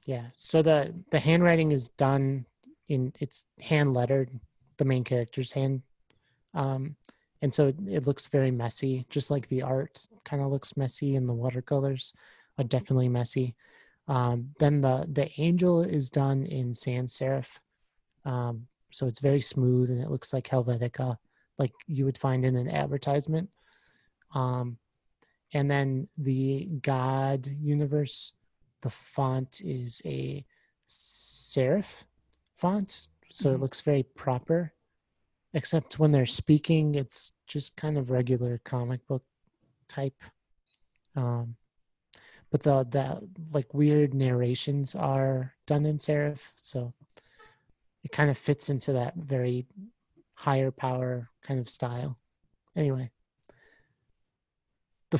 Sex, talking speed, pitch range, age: male, 130 wpm, 125-150 Hz, 30-49